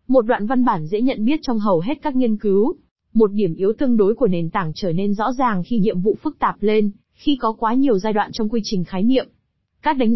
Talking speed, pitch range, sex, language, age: 260 wpm, 200-255 Hz, female, Vietnamese, 20-39